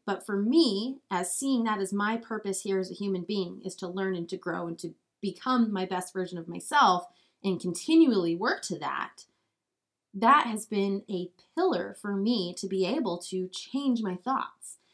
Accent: American